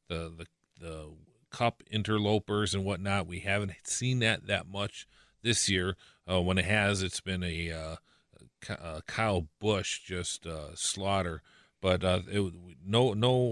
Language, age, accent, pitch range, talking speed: English, 40-59, American, 95-120 Hz, 145 wpm